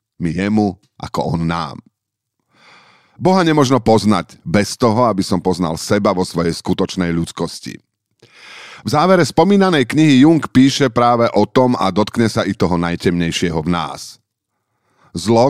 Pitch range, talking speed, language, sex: 90-115 Hz, 140 wpm, Slovak, male